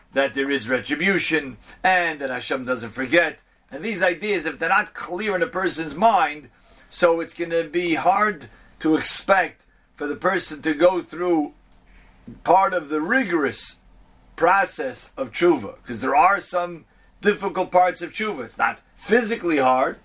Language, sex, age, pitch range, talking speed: English, male, 50-69, 140-185 Hz, 160 wpm